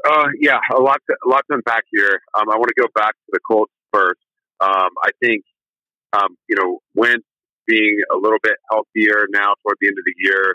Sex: male